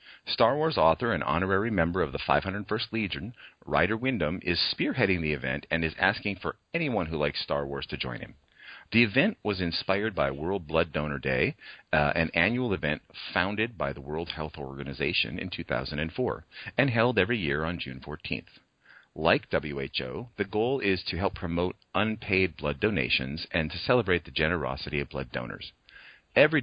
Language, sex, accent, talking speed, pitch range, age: English, male, American, 170 wpm, 75-105 Hz, 40-59